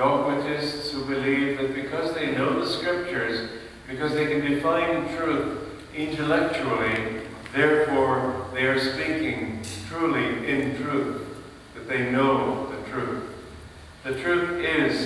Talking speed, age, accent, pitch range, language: 120 wpm, 50-69, American, 125-155 Hz, English